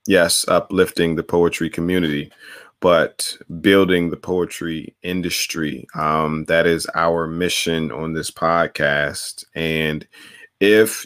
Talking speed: 110 wpm